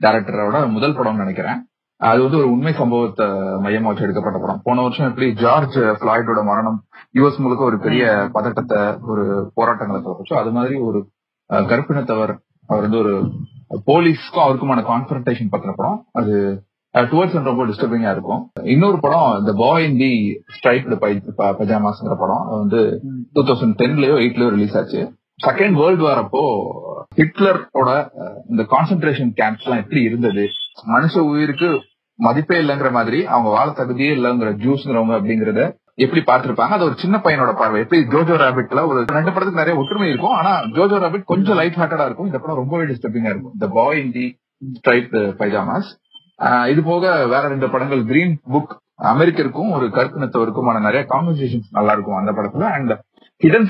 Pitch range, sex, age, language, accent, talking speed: 110-150 Hz, male, 30-49, Tamil, native, 85 wpm